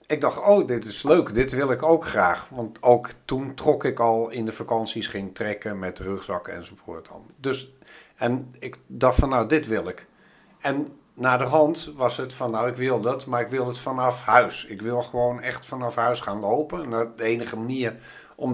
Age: 50-69